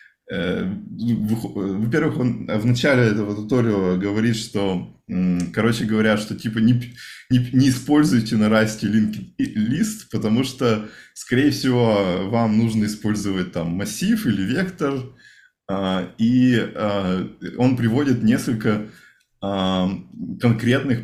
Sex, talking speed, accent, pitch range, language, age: male, 100 wpm, native, 100-125 Hz, Russian, 20-39